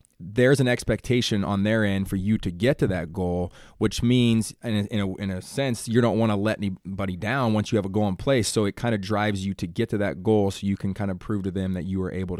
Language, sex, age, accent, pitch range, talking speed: English, male, 20-39, American, 95-115 Hz, 285 wpm